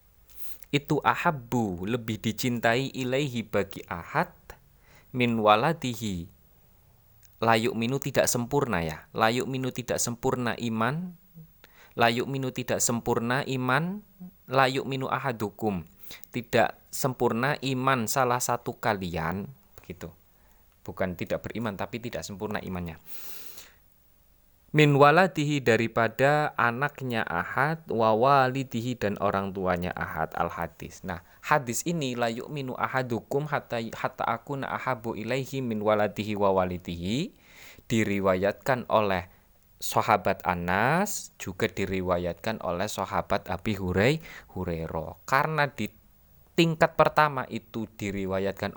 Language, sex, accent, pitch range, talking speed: Indonesian, male, native, 95-130 Hz, 95 wpm